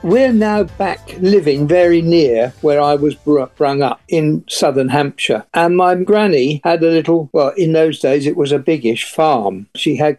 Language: English